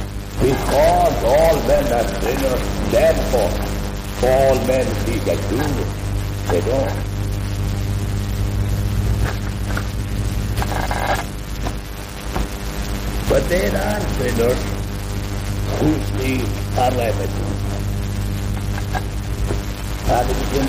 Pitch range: 100-105 Hz